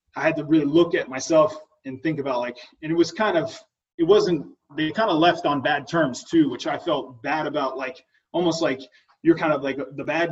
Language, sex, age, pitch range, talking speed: English, male, 20-39, 135-165 Hz, 235 wpm